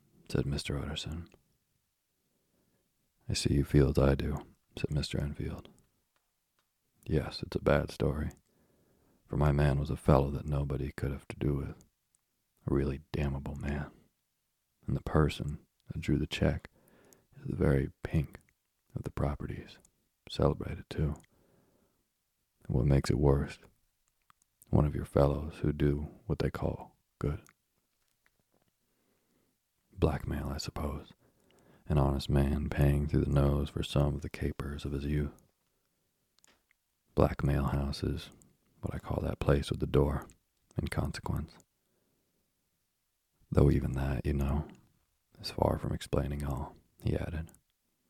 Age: 40-59